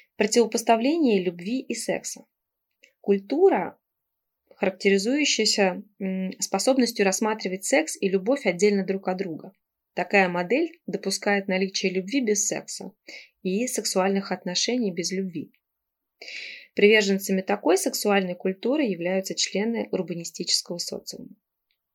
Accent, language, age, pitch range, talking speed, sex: native, Russian, 20-39, 185-230 Hz, 95 wpm, female